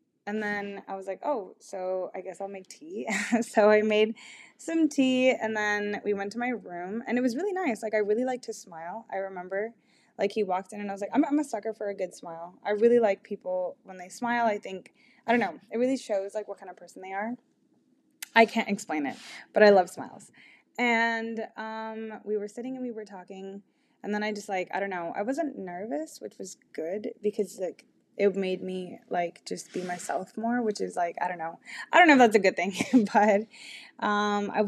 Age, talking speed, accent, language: 20-39, 230 wpm, American, English